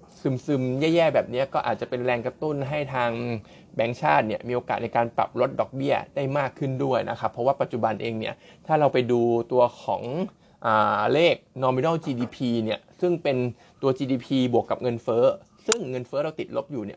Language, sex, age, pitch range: Thai, male, 20-39, 120-140 Hz